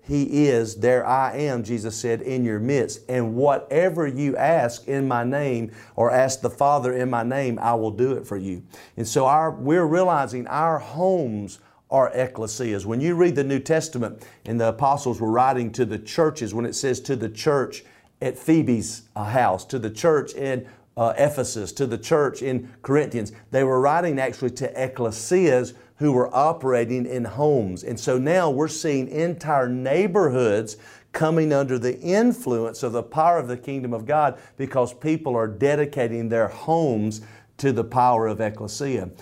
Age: 40-59